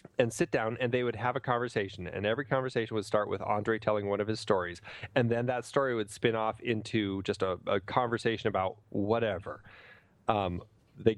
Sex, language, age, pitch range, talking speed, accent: male, English, 30-49, 105-130 Hz, 200 wpm, American